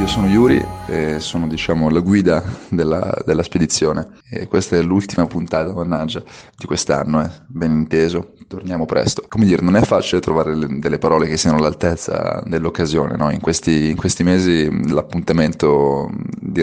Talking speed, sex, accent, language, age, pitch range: 160 wpm, male, native, Italian, 30-49, 75-85 Hz